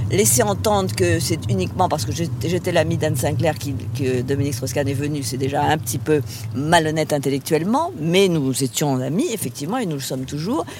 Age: 50-69